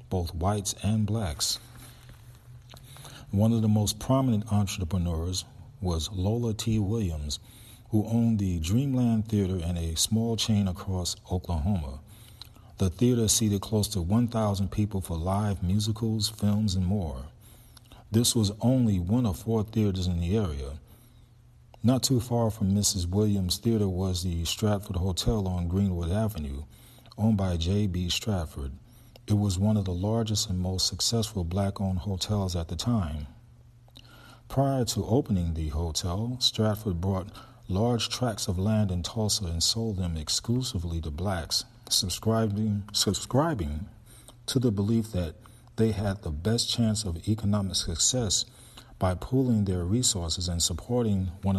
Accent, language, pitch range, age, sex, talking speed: American, English, 95-115 Hz, 40-59, male, 140 wpm